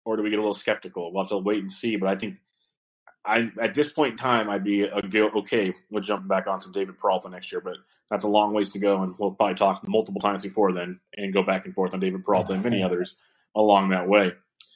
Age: 30-49